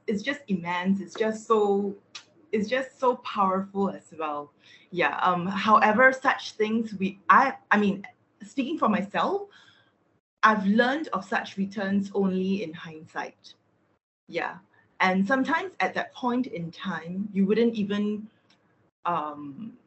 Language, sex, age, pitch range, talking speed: English, female, 20-39, 175-220 Hz, 135 wpm